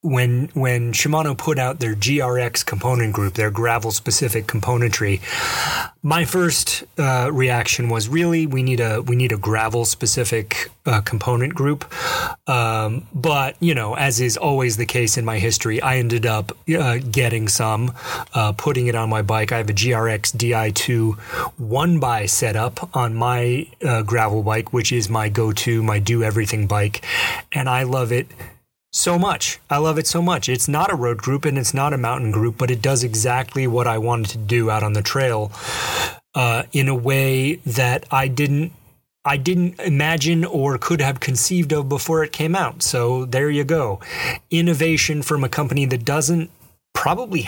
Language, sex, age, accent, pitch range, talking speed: English, male, 30-49, American, 115-150 Hz, 180 wpm